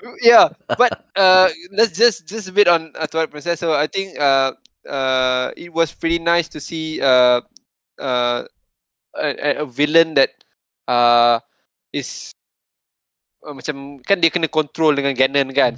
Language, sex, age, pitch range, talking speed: Malay, male, 20-39, 120-160 Hz, 150 wpm